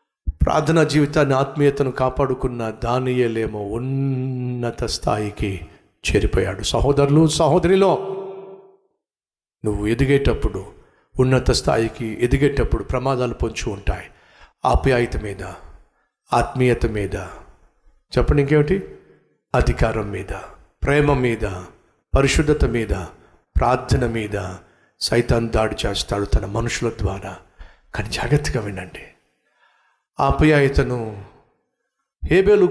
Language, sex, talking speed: Telugu, male, 80 wpm